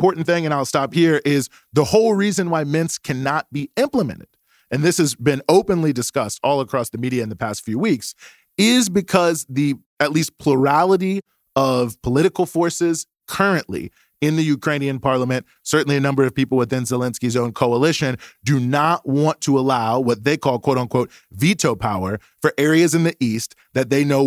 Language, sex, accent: English, male, American